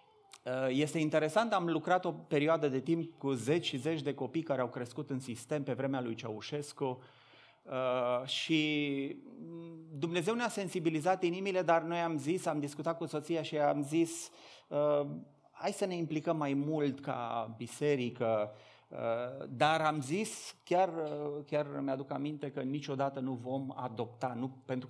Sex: male